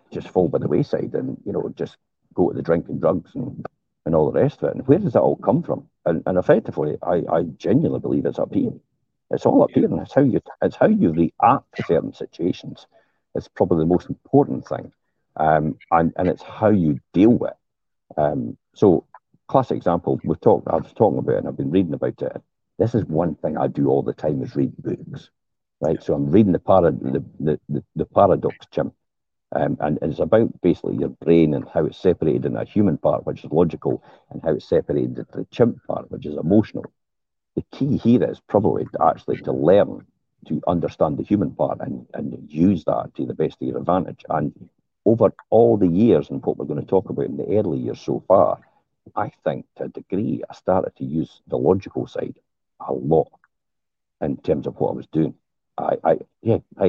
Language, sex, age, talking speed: English, male, 60-79, 215 wpm